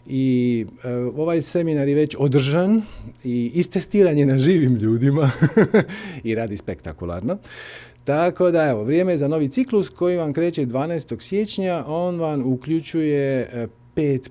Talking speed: 130 wpm